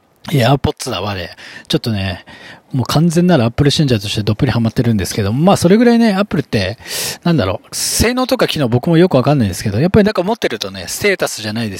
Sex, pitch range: male, 110-170 Hz